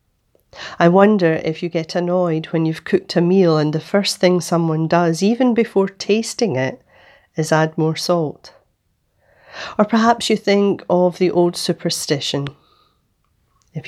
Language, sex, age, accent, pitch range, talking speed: English, female, 40-59, British, 155-185 Hz, 145 wpm